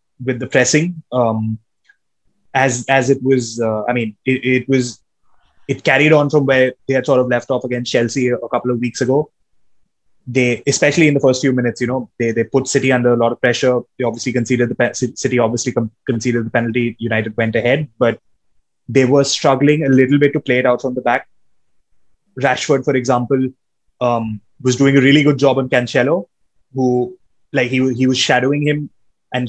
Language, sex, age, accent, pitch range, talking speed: English, male, 20-39, Indian, 120-135 Hz, 200 wpm